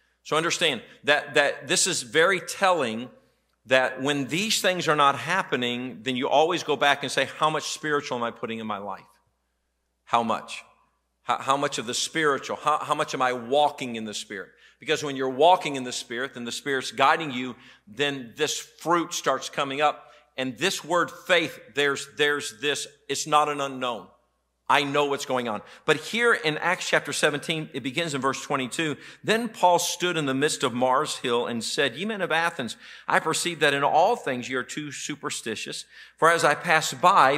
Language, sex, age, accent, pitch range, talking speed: English, male, 50-69, American, 125-155 Hz, 195 wpm